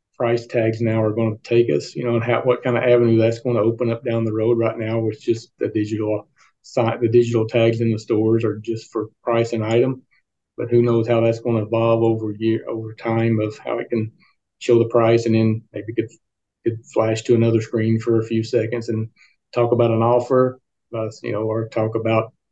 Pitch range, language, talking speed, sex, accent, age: 115-125 Hz, English, 225 wpm, male, American, 40-59